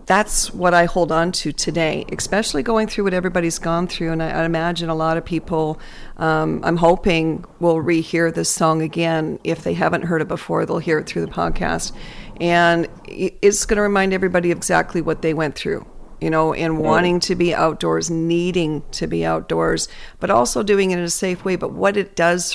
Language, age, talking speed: English, 50-69, 200 wpm